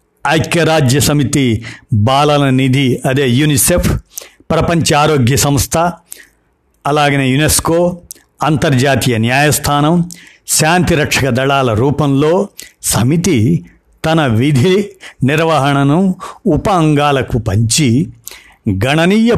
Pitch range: 125-165 Hz